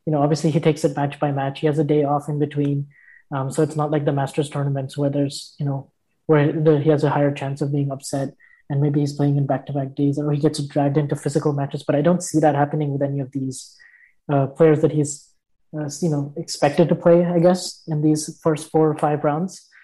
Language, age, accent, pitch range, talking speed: English, 20-39, Indian, 145-165 Hz, 245 wpm